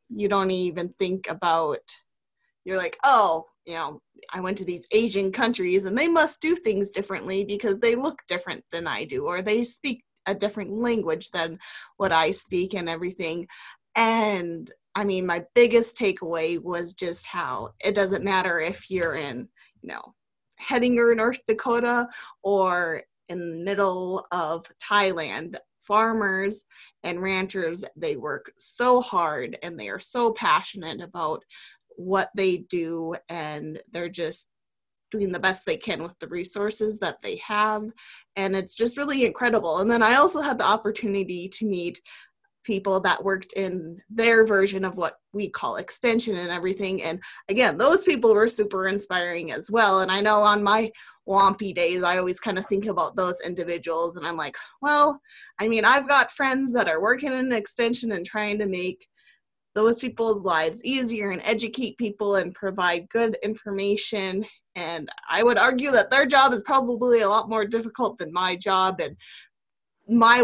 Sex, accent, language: female, American, English